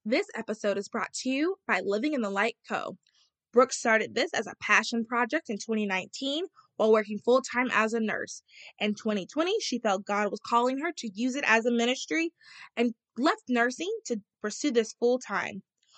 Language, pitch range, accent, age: English, 220-285 Hz, American, 20-39